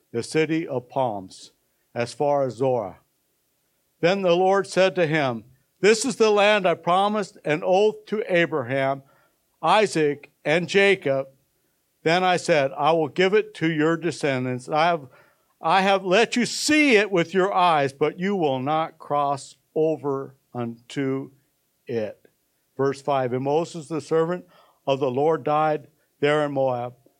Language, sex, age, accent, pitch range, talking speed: English, male, 60-79, American, 130-170 Hz, 150 wpm